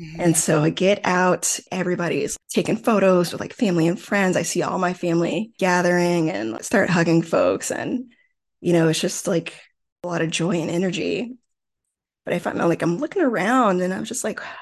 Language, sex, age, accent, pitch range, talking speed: English, female, 20-39, American, 175-245 Hz, 195 wpm